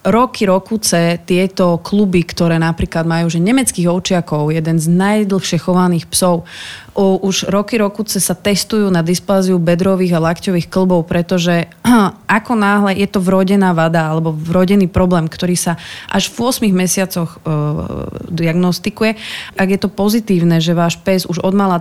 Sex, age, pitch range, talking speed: female, 30-49, 170-195 Hz, 145 wpm